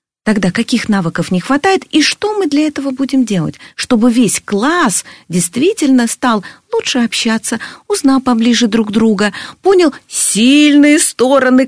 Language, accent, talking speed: Russian, native, 135 wpm